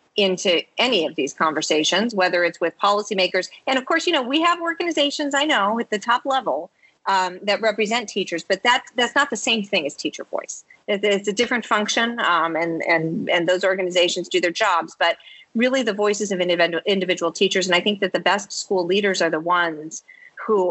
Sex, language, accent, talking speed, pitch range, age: female, English, American, 200 wpm, 175-235 Hz, 40-59